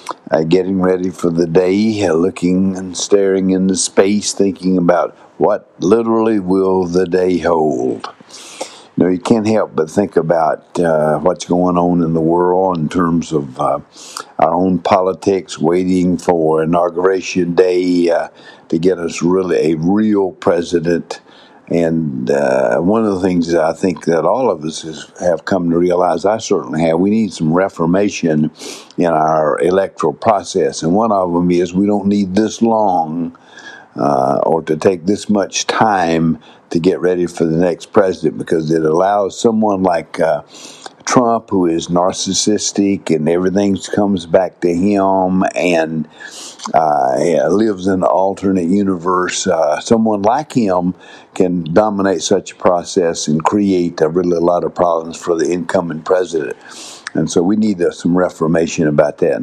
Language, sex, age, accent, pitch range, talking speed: English, male, 60-79, American, 85-100 Hz, 165 wpm